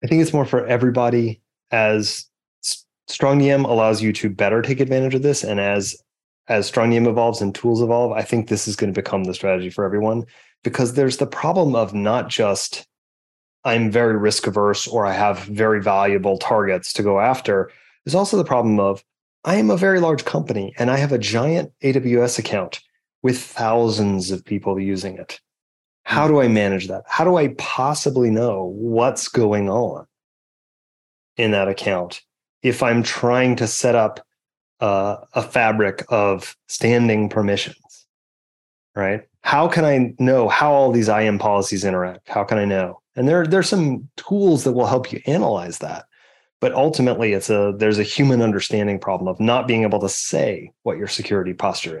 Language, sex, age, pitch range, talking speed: English, male, 30-49, 100-125 Hz, 175 wpm